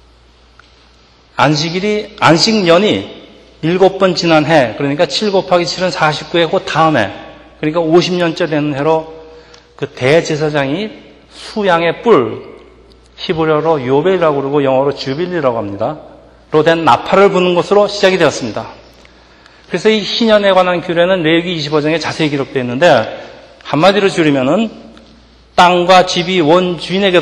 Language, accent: Korean, native